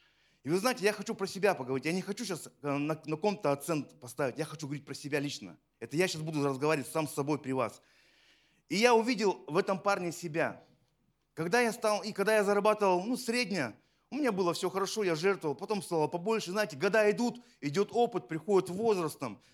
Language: Russian